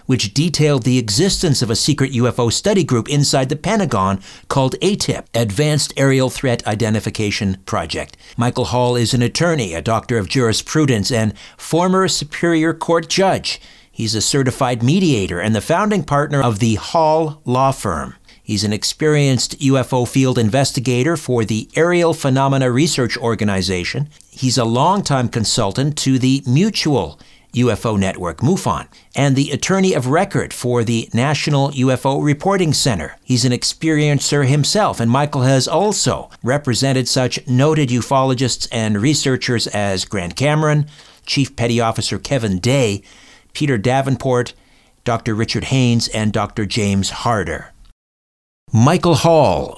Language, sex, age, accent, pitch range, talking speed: English, male, 60-79, American, 115-150 Hz, 135 wpm